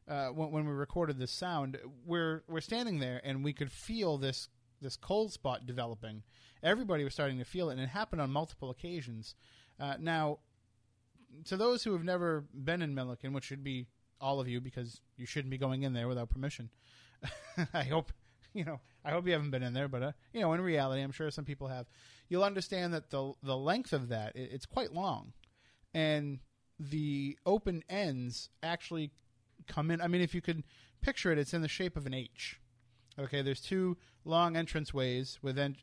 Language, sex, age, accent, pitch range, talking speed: English, male, 30-49, American, 125-160 Hz, 200 wpm